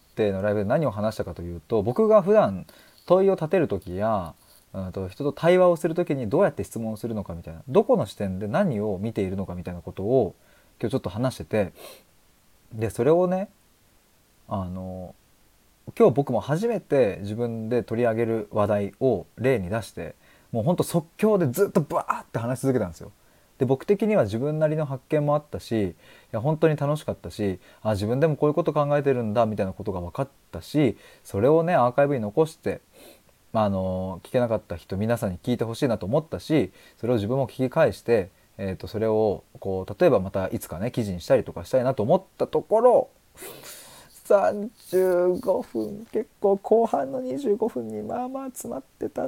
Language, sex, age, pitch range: Japanese, male, 20-39, 105-165 Hz